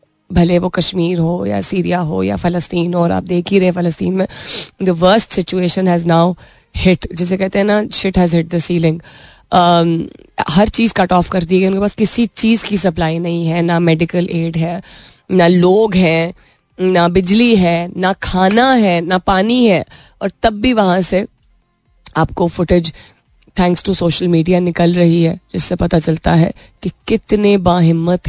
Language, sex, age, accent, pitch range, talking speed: Hindi, female, 20-39, native, 170-195 Hz, 175 wpm